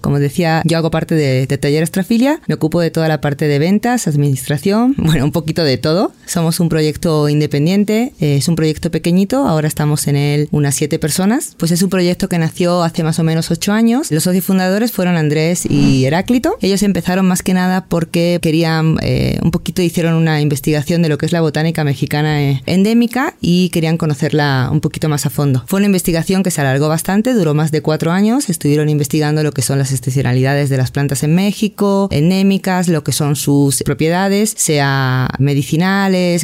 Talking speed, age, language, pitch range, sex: 195 wpm, 20-39, Spanish, 150-180 Hz, female